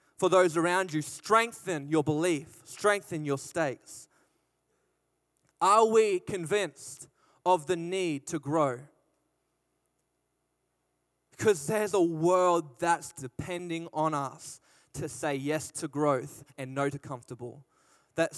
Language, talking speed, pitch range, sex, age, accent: English, 120 wpm, 140-175 Hz, male, 20-39, Australian